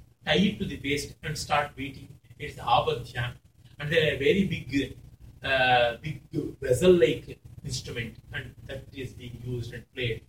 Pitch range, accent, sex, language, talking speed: 125-195 Hz, native, male, Kannada, 170 wpm